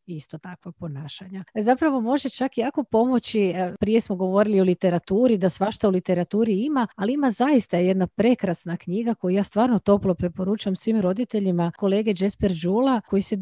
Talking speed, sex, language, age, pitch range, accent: 160 wpm, female, Croatian, 40-59, 185-235 Hz, native